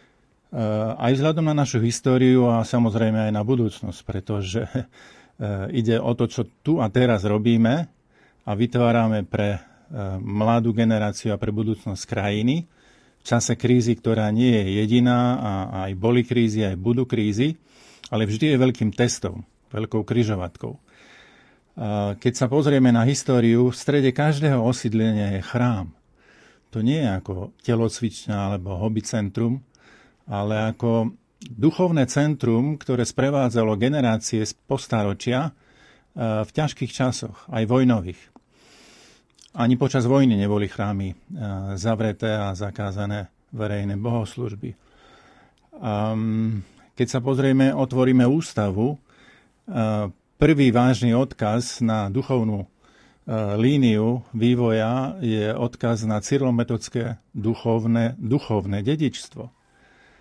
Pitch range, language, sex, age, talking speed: 105-125 Hz, Slovak, male, 50-69, 110 wpm